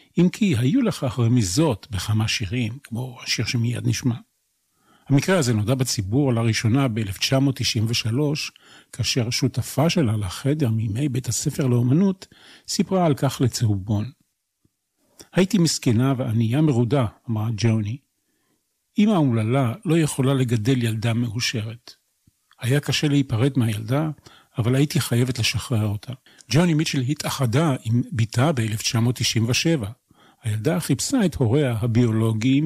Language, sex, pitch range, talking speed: Hebrew, male, 115-145 Hz, 115 wpm